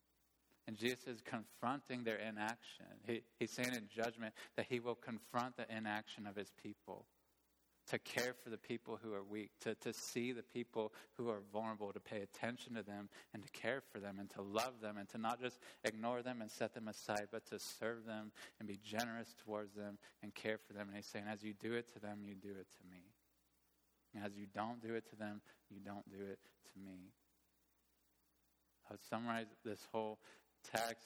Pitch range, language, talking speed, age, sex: 100-115 Hz, English, 205 wpm, 20-39, male